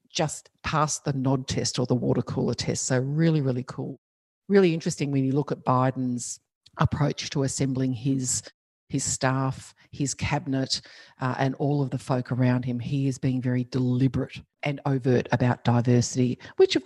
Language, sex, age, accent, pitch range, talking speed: English, female, 50-69, Australian, 125-145 Hz, 170 wpm